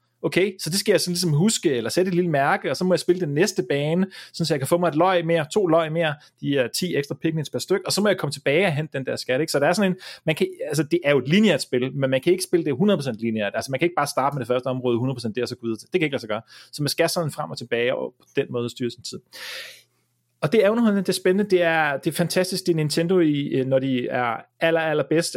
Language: Danish